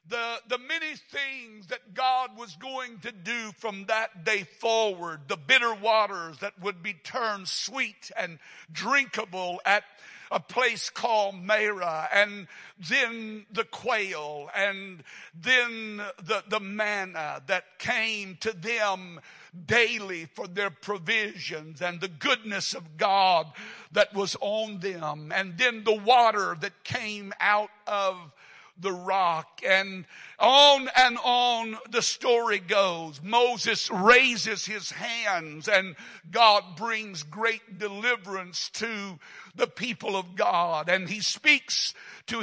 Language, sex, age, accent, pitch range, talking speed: English, male, 60-79, American, 185-230 Hz, 125 wpm